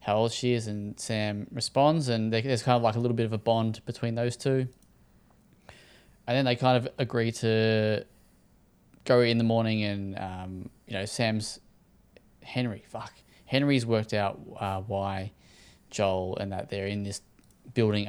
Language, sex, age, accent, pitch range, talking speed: English, male, 10-29, Australian, 100-115 Hz, 170 wpm